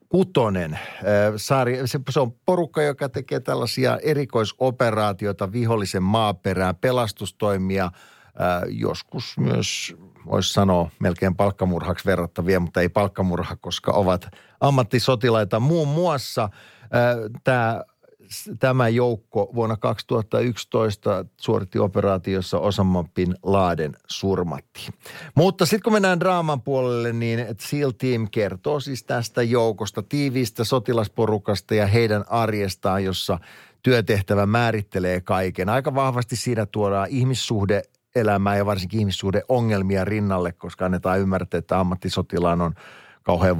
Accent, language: native, Finnish